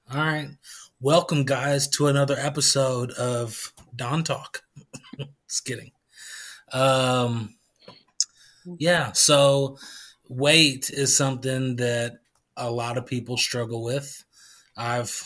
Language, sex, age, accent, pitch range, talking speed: English, male, 20-39, American, 125-145 Hz, 100 wpm